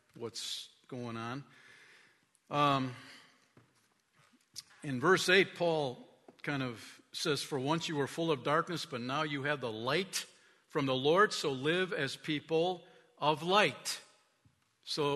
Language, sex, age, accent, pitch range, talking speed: English, male, 50-69, American, 140-185 Hz, 135 wpm